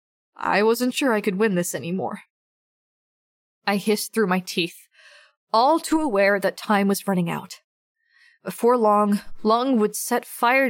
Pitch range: 195-235 Hz